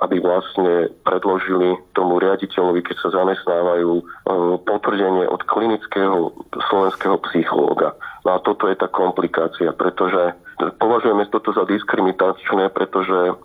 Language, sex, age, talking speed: Slovak, male, 40-59, 105 wpm